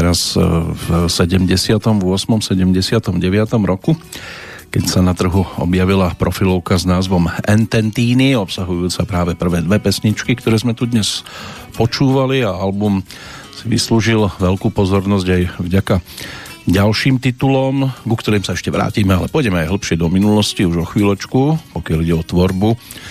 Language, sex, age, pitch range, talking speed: Slovak, male, 50-69, 90-120 Hz, 135 wpm